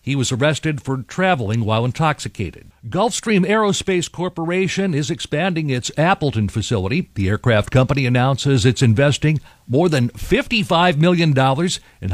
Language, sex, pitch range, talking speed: English, male, 125-170 Hz, 130 wpm